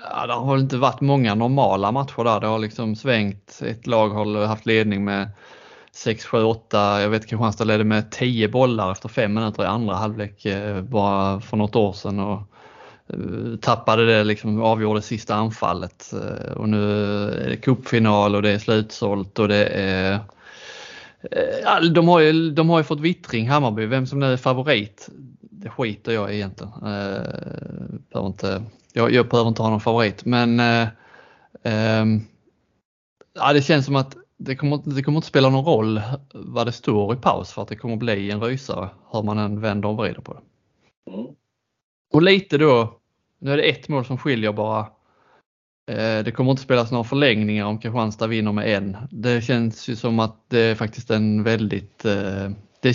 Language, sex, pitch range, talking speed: English, male, 105-130 Hz, 180 wpm